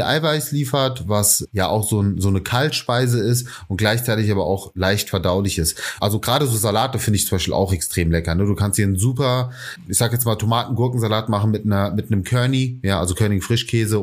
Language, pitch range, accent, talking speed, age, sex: German, 105-130 Hz, German, 210 wpm, 30-49, male